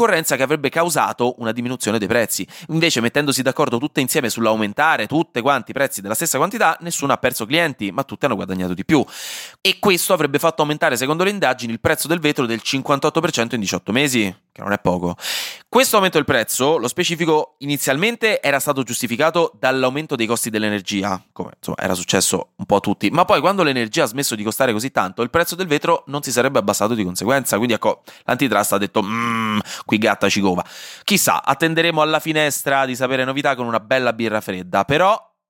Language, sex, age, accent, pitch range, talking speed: Italian, male, 20-39, native, 110-155 Hz, 195 wpm